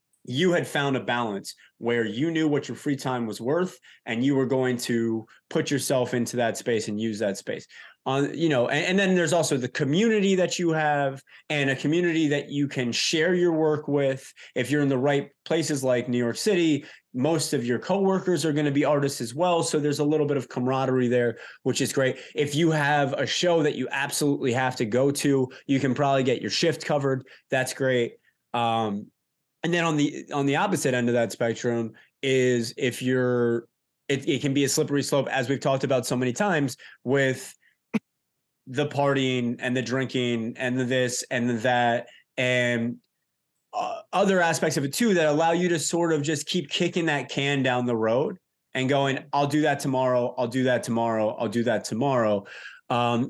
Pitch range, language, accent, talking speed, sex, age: 125-155 Hz, English, American, 205 wpm, male, 20-39